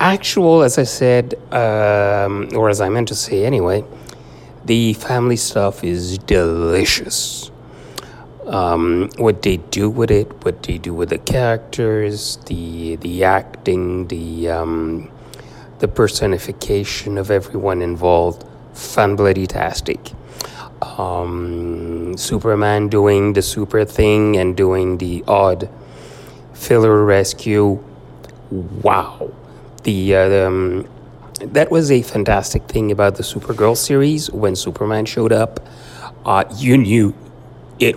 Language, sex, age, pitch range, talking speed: English, male, 30-49, 90-115 Hz, 120 wpm